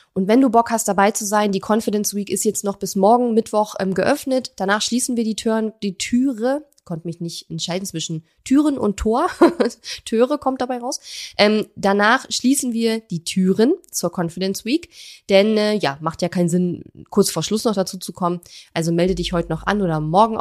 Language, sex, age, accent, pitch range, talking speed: German, female, 20-39, German, 175-225 Hz, 205 wpm